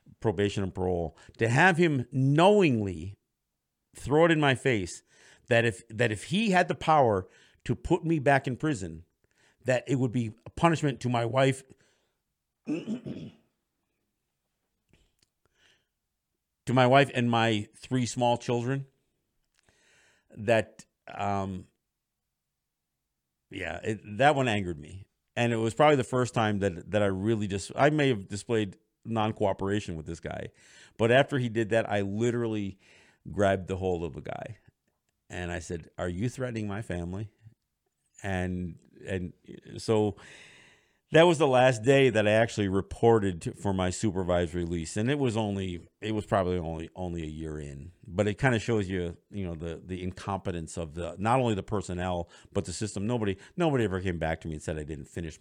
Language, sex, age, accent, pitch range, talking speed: English, male, 50-69, American, 90-125 Hz, 165 wpm